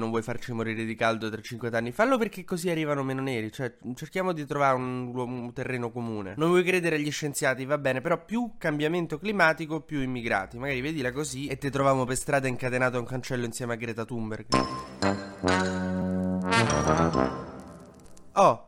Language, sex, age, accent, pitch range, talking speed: Italian, male, 20-39, native, 110-135 Hz, 170 wpm